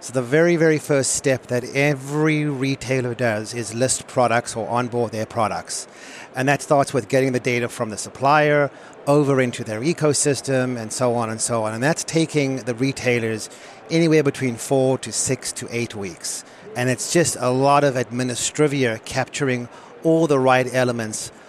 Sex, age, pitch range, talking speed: male, 40-59, 120-140 Hz, 175 wpm